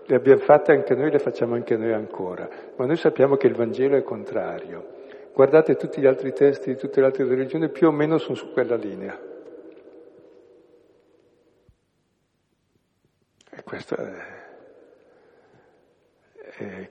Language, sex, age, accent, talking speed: Italian, male, 60-79, native, 130 wpm